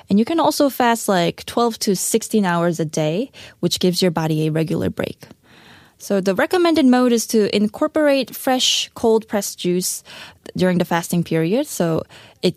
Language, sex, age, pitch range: Korean, female, 20-39, 165-230 Hz